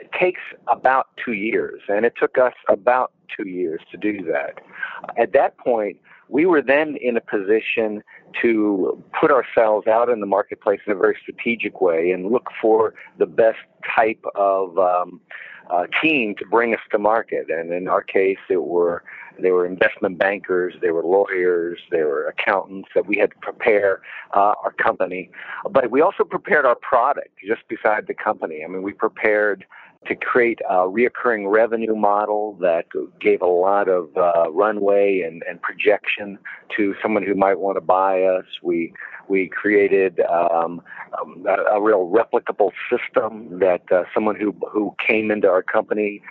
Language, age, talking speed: English, 50-69, 165 wpm